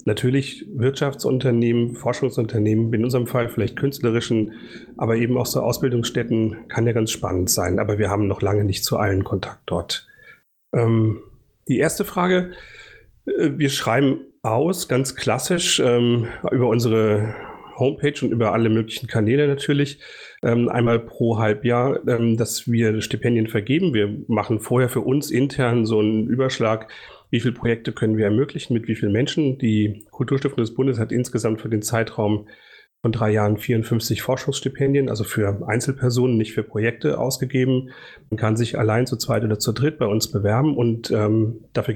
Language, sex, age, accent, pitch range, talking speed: German, male, 40-59, German, 110-130 Hz, 155 wpm